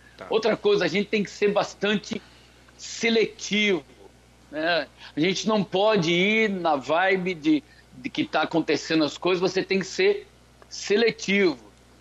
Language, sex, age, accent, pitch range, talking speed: Portuguese, male, 60-79, Brazilian, 160-220 Hz, 145 wpm